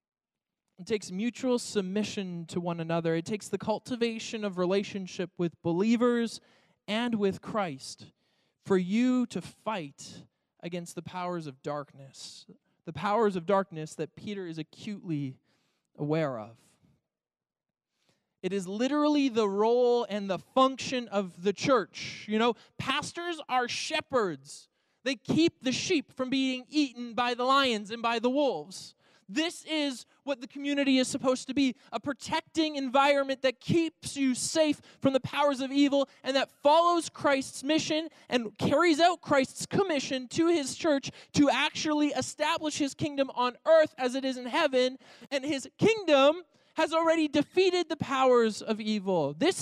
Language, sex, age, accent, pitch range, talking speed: English, male, 20-39, American, 200-280 Hz, 150 wpm